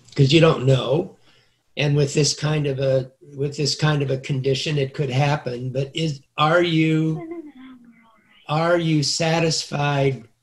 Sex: male